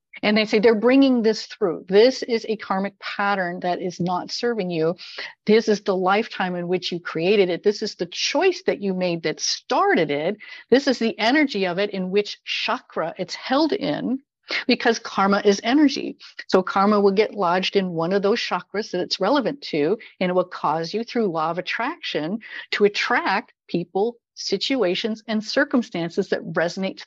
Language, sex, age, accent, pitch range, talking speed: English, female, 50-69, American, 185-240 Hz, 185 wpm